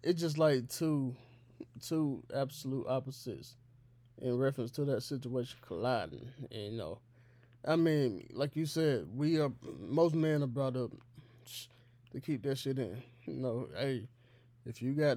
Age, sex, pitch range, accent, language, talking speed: 20-39, male, 120-150 Hz, American, English, 155 wpm